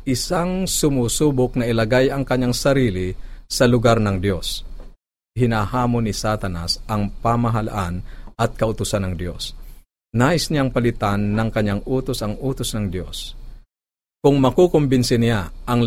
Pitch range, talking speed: 105-125 Hz, 130 wpm